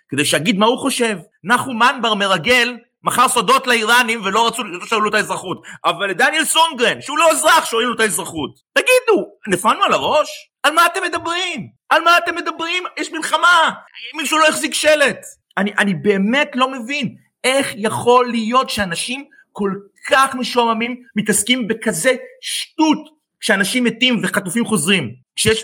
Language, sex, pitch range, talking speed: Hebrew, male, 165-250 Hz, 150 wpm